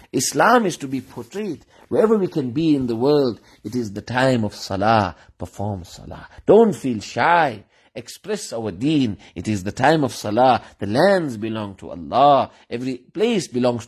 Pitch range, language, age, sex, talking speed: 115-150 Hz, English, 50-69, male, 175 wpm